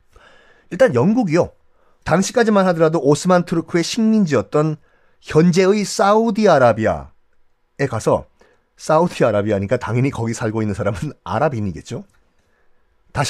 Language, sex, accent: Korean, male, native